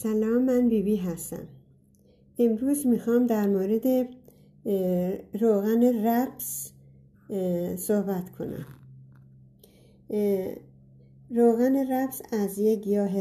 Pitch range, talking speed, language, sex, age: 185-220 Hz, 80 wpm, Persian, female, 50-69